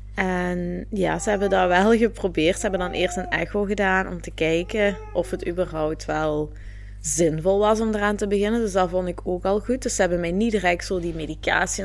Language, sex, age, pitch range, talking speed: Dutch, female, 20-39, 155-190 Hz, 220 wpm